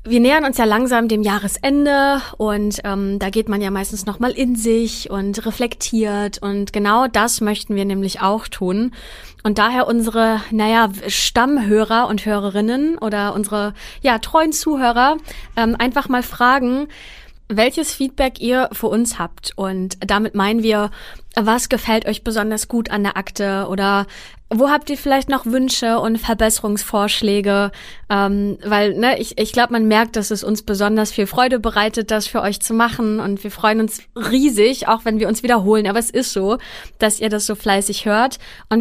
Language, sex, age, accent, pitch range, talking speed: German, female, 20-39, German, 205-245 Hz, 175 wpm